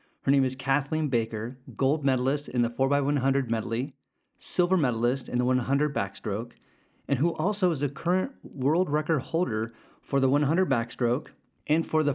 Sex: male